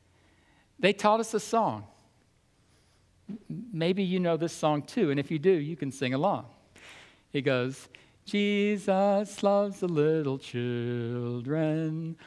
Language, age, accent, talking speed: English, 60-79, American, 125 wpm